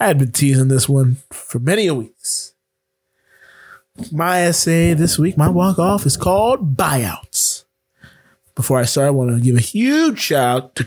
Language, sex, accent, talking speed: English, male, American, 170 wpm